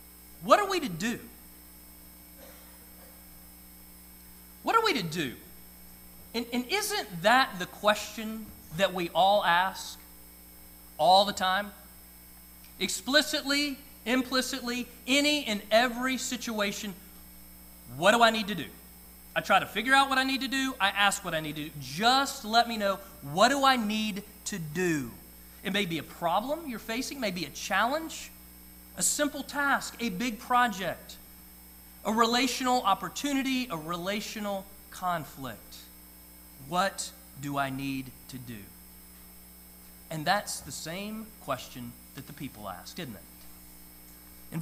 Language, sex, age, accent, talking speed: English, male, 40-59, American, 140 wpm